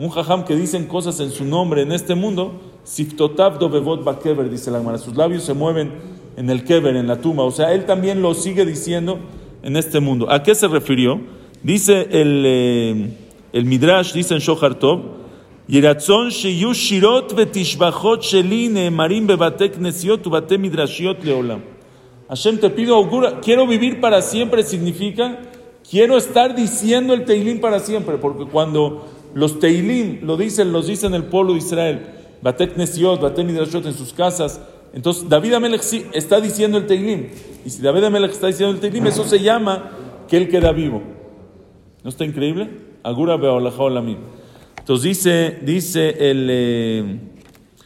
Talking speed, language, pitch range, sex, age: 155 wpm, English, 140-200 Hz, male, 40-59